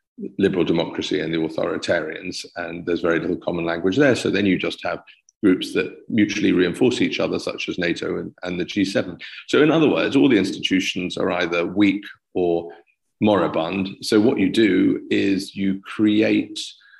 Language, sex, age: English, male, 40-59